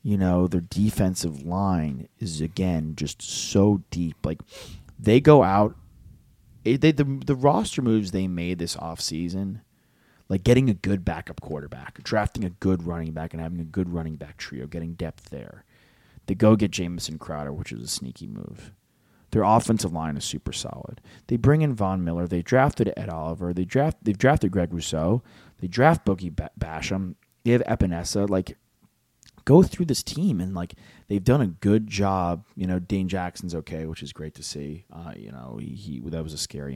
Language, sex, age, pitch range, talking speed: English, male, 30-49, 80-105 Hz, 190 wpm